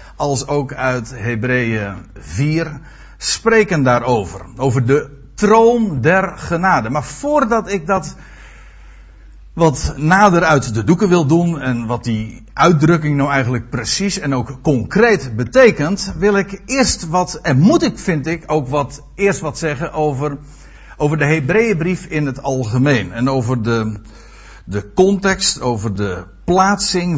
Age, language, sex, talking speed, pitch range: 60-79, Dutch, male, 140 wpm, 120-175 Hz